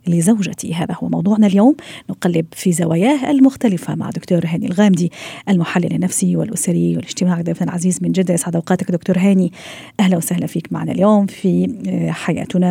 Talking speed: 150 wpm